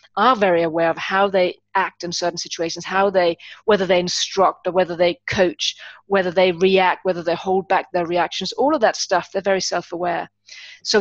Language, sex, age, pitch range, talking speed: English, female, 30-49, 175-210 Hz, 195 wpm